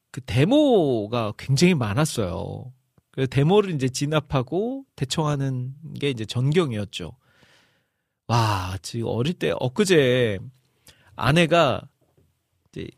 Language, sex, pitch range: Korean, male, 115-150 Hz